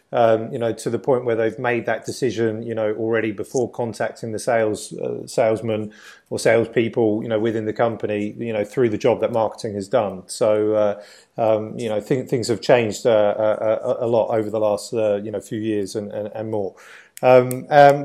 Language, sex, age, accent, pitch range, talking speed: English, male, 30-49, British, 110-120 Hz, 210 wpm